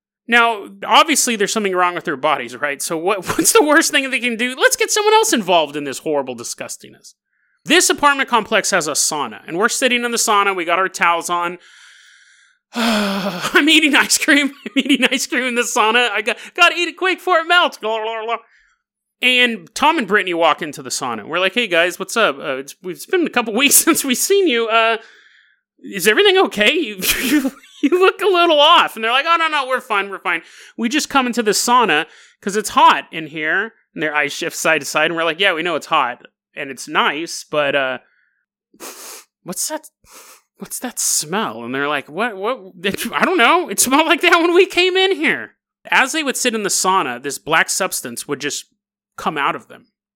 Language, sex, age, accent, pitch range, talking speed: English, male, 30-49, American, 180-295 Hz, 220 wpm